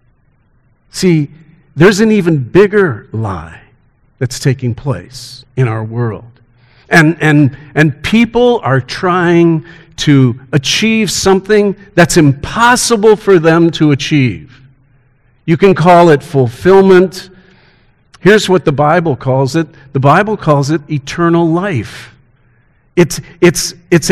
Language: English